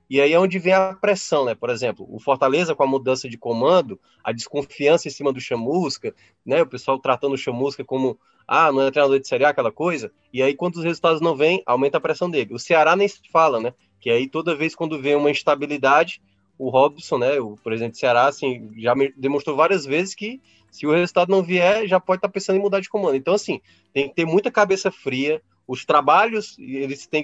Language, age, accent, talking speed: Portuguese, 20-39, Brazilian, 225 wpm